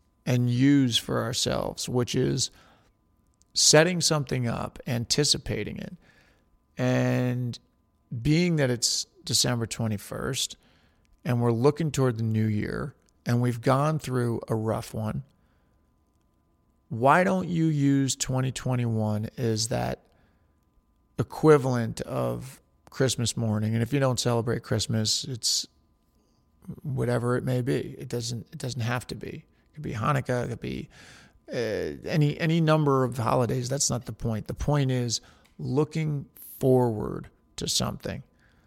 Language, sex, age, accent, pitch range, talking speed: English, male, 40-59, American, 110-135 Hz, 130 wpm